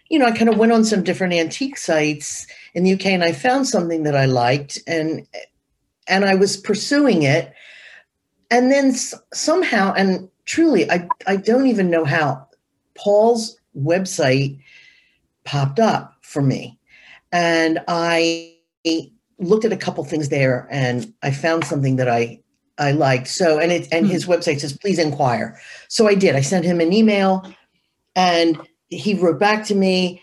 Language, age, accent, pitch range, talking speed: English, 50-69, American, 160-195 Hz, 165 wpm